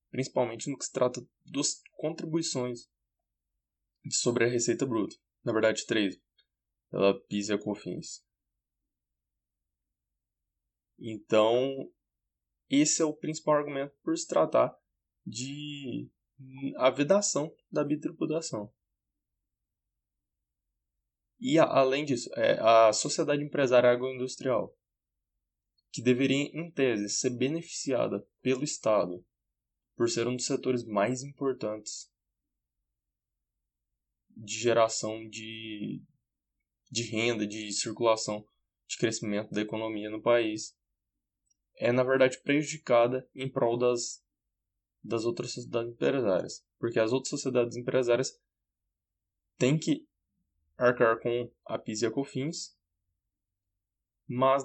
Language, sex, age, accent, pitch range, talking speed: Portuguese, male, 20-39, Brazilian, 95-130 Hz, 105 wpm